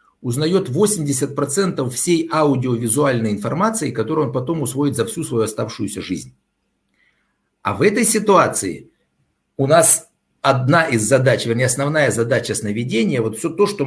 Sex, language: male, Russian